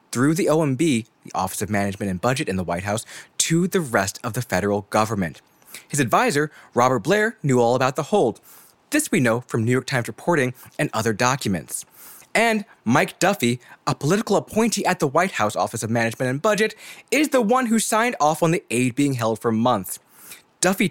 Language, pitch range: English, 115-190 Hz